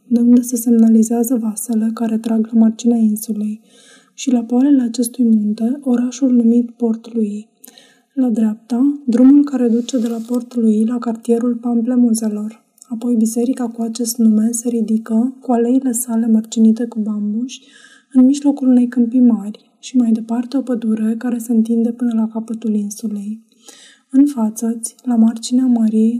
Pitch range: 225-245 Hz